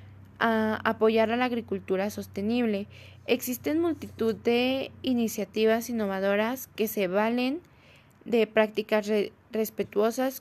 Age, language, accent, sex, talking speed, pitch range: 20-39, Spanish, Mexican, female, 90 wpm, 200-235 Hz